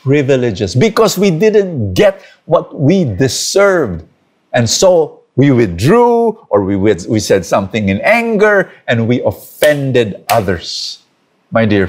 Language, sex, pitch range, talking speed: English, male, 105-180 Hz, 125 wpm